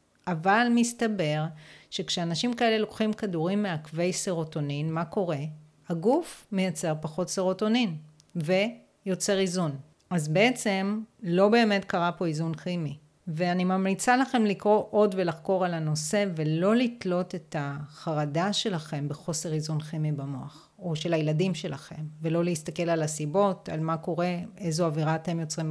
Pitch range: 160-205 Hz